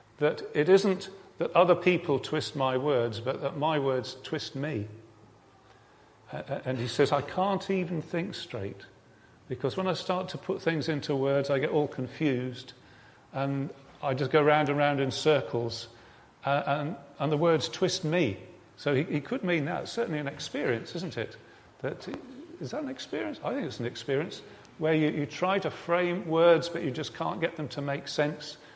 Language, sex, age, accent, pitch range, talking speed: English, male, 40-59, British, 125-150 Hz, 195 wpm